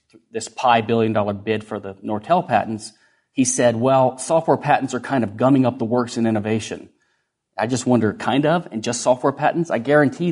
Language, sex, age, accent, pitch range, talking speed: English, male, 30-49, American, 115-145 Hz, 200 wpm